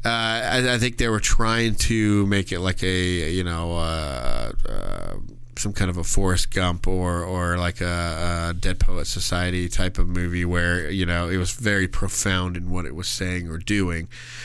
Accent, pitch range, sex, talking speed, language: American, 90-120 Hz, male, 195 wpm, English